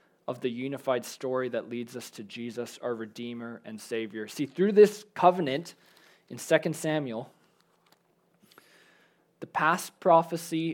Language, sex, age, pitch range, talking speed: English, male, 20-39, 125-160 Hz, 130 wpm